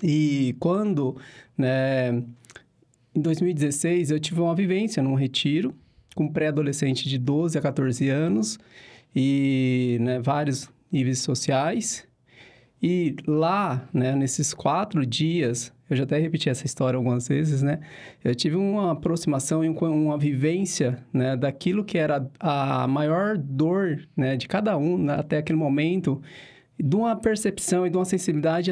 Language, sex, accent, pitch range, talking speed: Portuguese, male, Brazilian, 135-170 Hz, 140 wpm